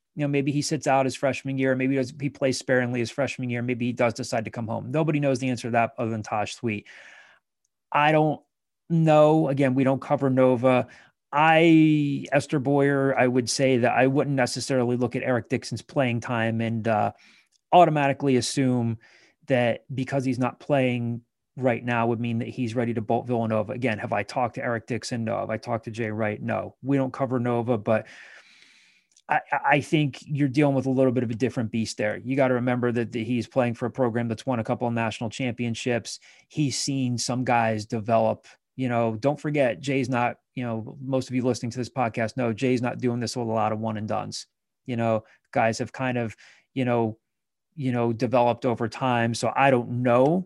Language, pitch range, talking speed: English, 115-135 Hz, 210 wpm